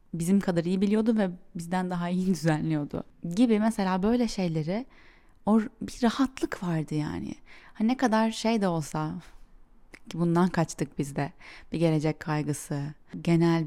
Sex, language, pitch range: female, Turkish, 155-205 Hz